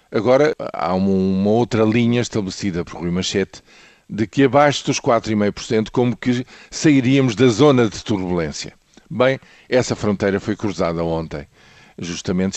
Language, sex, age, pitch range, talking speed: Portuguese, male, 50-69, 100-135 Hz, 140 wpm